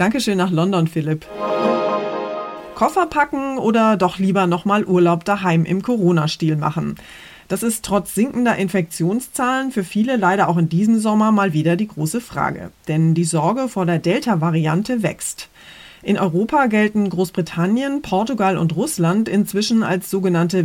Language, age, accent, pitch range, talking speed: German, 30-49, German, 165-210 Hz, 140 wpm